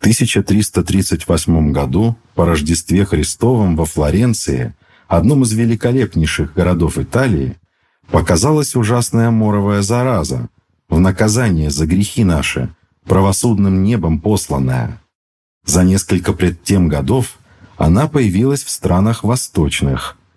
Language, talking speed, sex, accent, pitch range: Russian, 100 wpm, male, native, 85-115 Hz